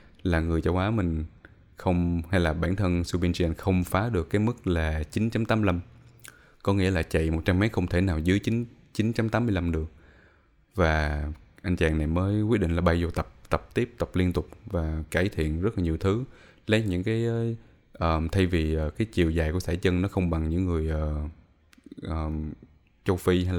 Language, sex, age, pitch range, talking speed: Vietnamese, male, 20-39, 80-105 Hz, 195 wpm